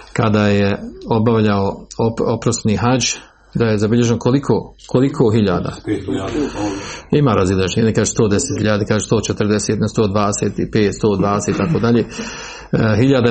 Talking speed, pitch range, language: 95 wpm, 110-140 Hz, Croatian